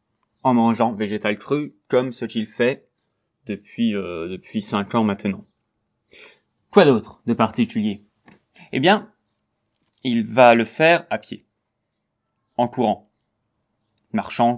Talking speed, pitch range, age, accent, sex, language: 120 wpm, 110-130 Hz, 20-39, French, male, French